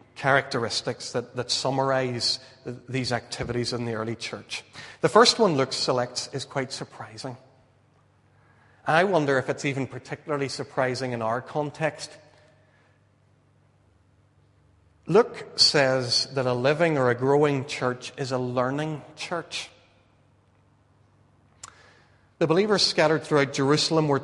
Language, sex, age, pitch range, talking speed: English, male, 40-59, 125-145 Hz, 115 wpm